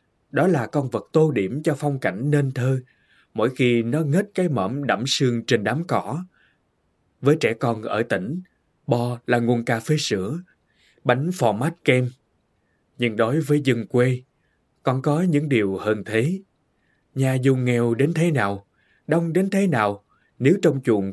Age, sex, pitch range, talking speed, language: 20-39, male, 115-155 Hz, 175 wpm, Vietnamese